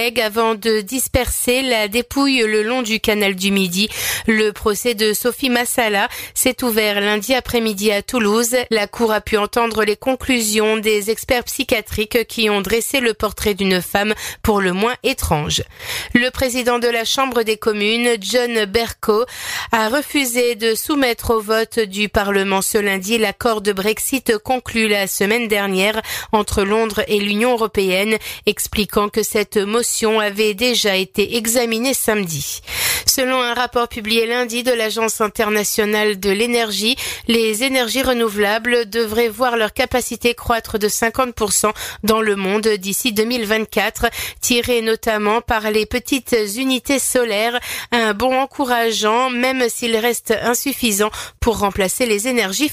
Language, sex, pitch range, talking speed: French, female, 215-250 Hz, 145 wpm